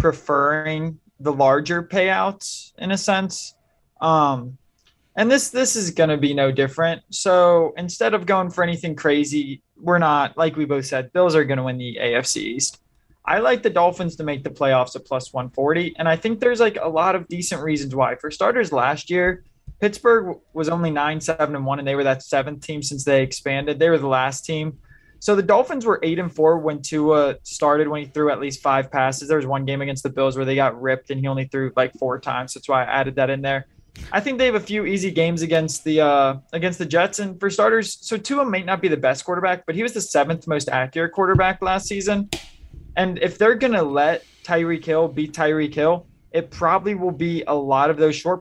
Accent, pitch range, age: American, 140-180 Hz, 20-39